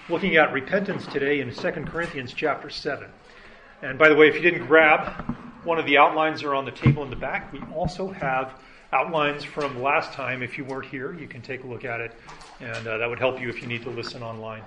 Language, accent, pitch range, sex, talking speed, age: English, American, 125-165 Hz, male, 235 wpm, 40-59